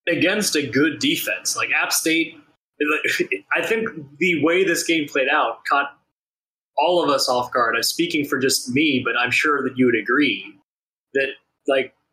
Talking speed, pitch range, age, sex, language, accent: 175 wpm, 125-160 Hz, 20-39, male, English, American